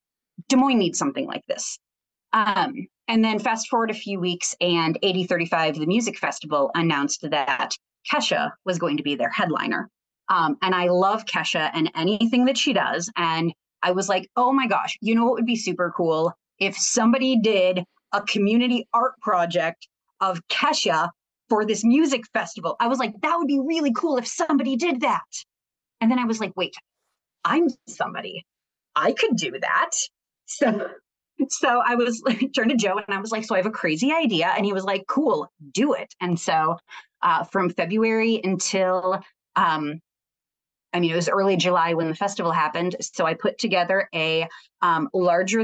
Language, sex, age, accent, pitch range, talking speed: English, female, 30-49, American, 175-240 Hz, 180 wpm